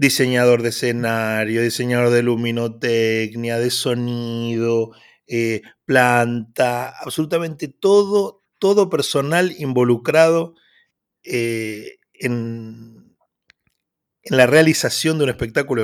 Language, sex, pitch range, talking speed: Spanish, male, 120-200 Hz, 85 wpm